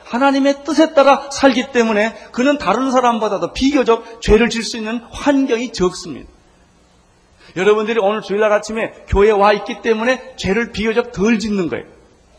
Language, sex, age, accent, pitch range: Korean, male, 40-59, native, 160-255 Hz